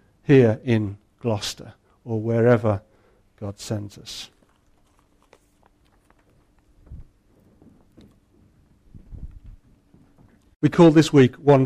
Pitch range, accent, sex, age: 110-150 Hz, British, male, 50-69